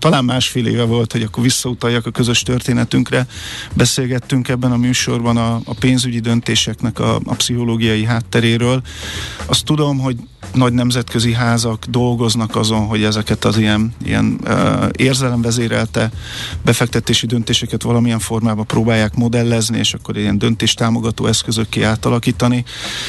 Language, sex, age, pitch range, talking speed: Hungarian, male, 50-69, 110-125 Hz, 125 wpm